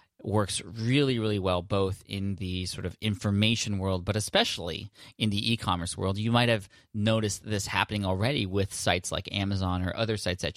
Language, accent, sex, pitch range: English, American, male, 95-110 Hz